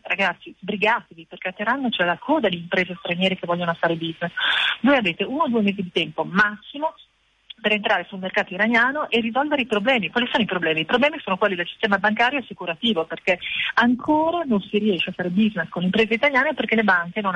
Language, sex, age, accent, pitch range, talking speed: Italian, female, 40-59, native, 180-220 Hz, 215 wpm